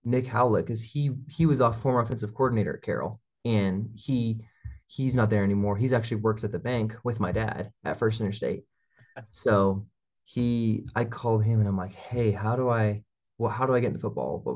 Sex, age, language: male, 20-39, English